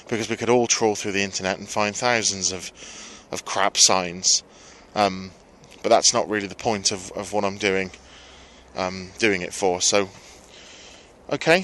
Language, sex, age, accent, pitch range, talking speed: English, male, 20-39, British, 100-120 Hz, 170 wpm